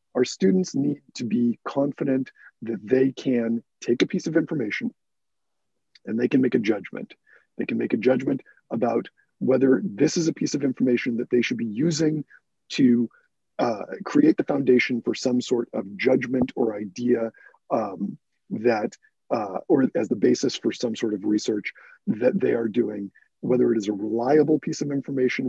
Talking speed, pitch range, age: 175 wpm, 115-155 Hz, 40-59